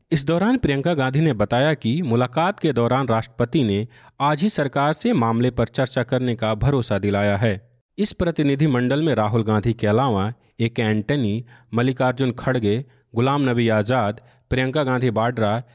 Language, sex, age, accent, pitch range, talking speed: Hindi, male, 40-59, native, 115-150 Hz, 165 wpm